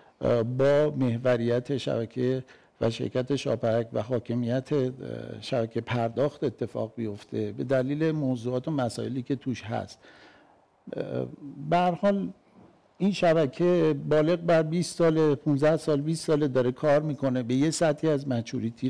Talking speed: 120 wpm